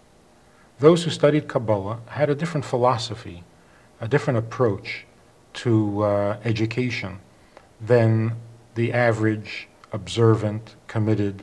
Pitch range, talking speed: 105-125 Hz, 100 wpm